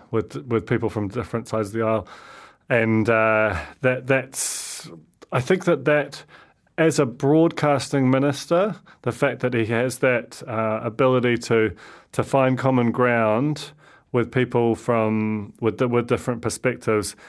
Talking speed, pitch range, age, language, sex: 140 wpm, 110-130 Hz, 30-49, English, male